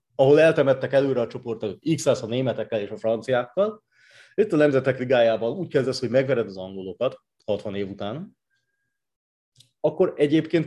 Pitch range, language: 110-145 Hz, Hungarian